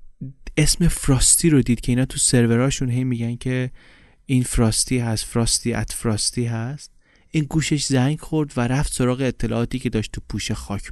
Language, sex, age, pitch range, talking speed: Persian, male, 30-49, 110-135 Hz, 170 wpm